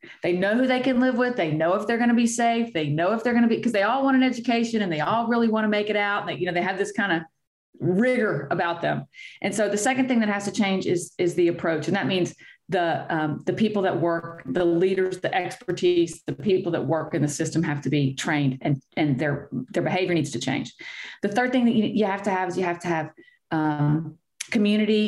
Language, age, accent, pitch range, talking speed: English, 40-59, American, 160-205 Hz, 260 wpm